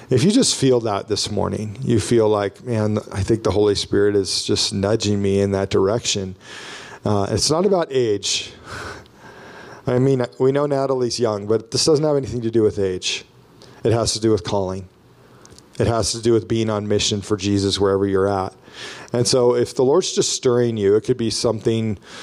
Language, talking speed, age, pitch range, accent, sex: English, 200 wpm, 40-59, 105-120 Hz, American, male